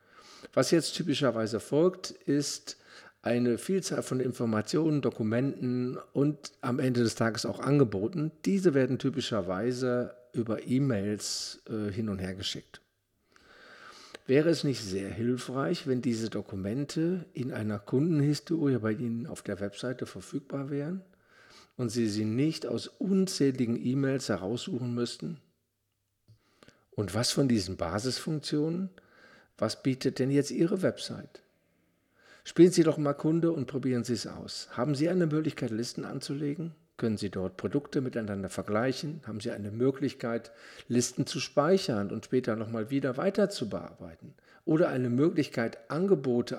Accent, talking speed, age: German, 135 wpm, 50-69